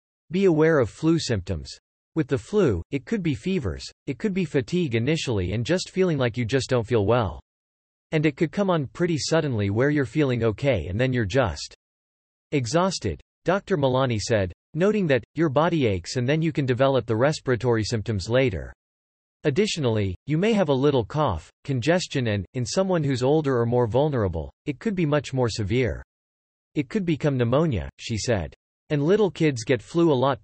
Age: 40-59